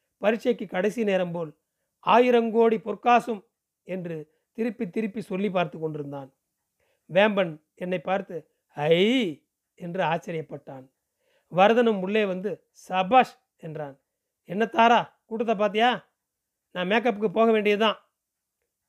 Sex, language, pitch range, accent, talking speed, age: male, Tamil, 180-225 Hz, native, 100 wpm, 40-59